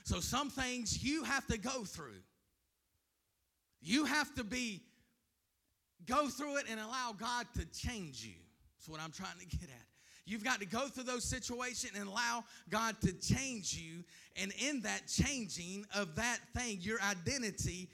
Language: English